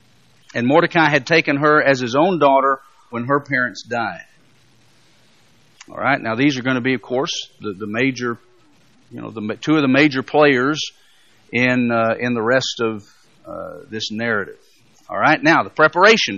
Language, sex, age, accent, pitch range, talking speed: English, male, 50-69, American, 125-175 Hz, 175 wpm